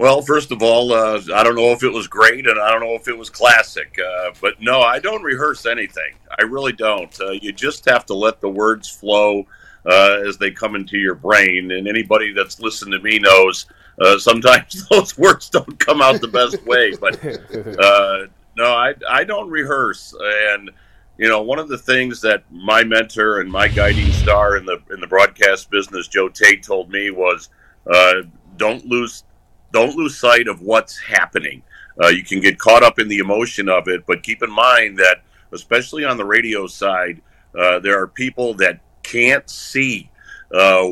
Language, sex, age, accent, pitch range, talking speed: English, male, 50-69, American, 95-115 Hz, 195 wpm